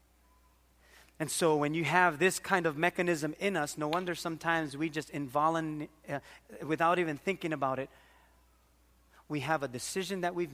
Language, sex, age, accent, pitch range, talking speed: English, male, 30-49, American, 145-200 Hz, 160 wpm